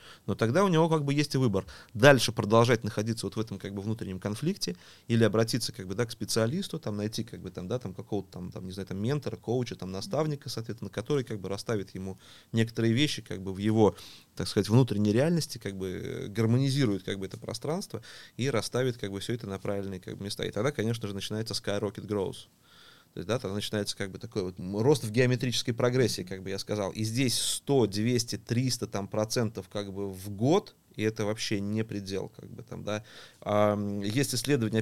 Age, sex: 30-49, male